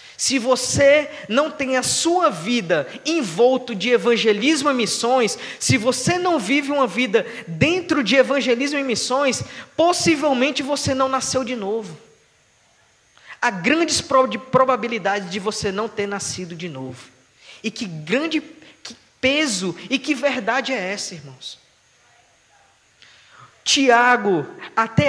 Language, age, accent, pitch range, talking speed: Portuguese, 20-39, Brazilian, 225-280 Hz, 125 wpm